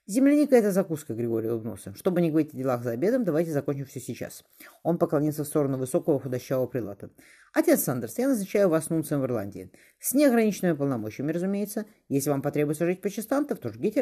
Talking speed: 185 wpm